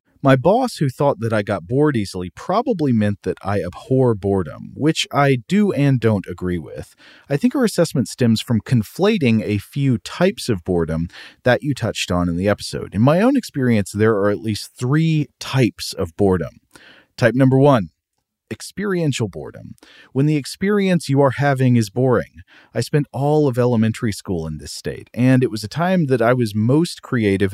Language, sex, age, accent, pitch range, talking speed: English, male, 40-59, American, 100-140 Hz, 185 wpm